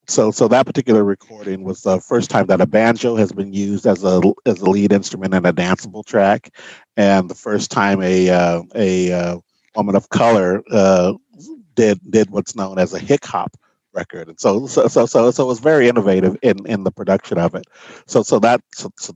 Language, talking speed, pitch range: English, 205 wpm, 95-115 Hz